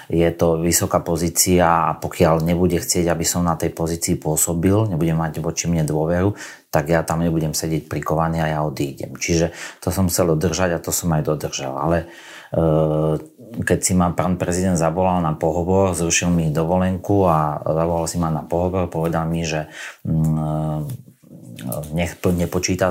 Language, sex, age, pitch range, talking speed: Slovak, male, 30-49, 80-90 Hz, 160 wpm